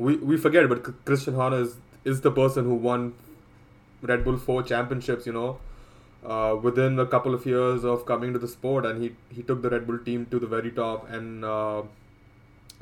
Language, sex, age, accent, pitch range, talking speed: English, male, 20-39, Indian, 115-130 Hz, 200 wpm